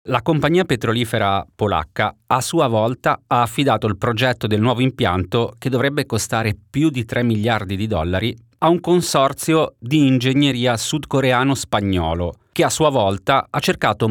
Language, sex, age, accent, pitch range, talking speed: Italian, male, 30-49, native, 105-135 Hz, 150 wpm